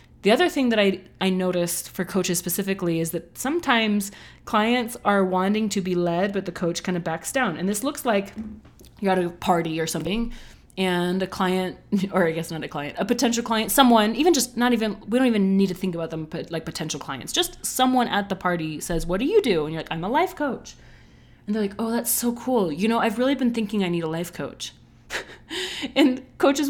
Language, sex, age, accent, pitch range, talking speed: English, female, 30-49, American, 180-240 Hz, 230 wpm